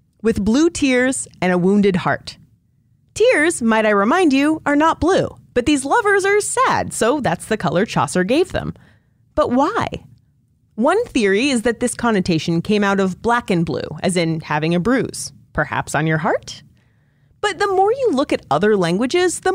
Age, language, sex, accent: 30-49, English, female, American